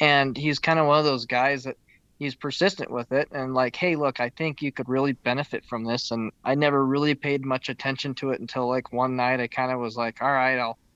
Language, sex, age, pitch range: English, male, 20-39, 125-145 Hz